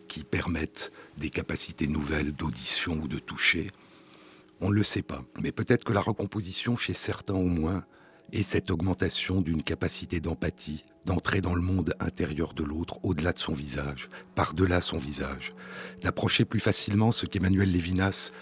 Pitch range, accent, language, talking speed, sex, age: 75-105 Hz, French, French, 160 wpm, male, 60-79